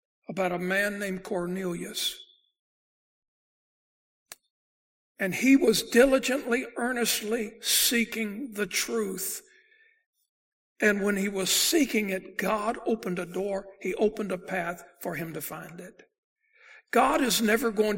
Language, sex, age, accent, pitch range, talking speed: English, male, 60-79, American, 185-240 Hz, 120 wpm